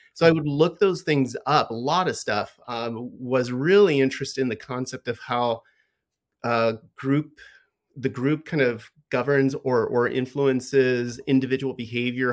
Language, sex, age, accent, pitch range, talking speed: English, male, 30-49, American, 120-140 Hz, 155 wpm